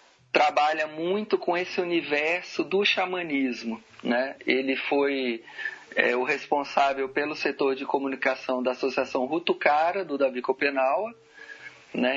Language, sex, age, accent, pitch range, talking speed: Portuguese, male, 40-59, Brazilian, 130-175 Hz, 125 wpm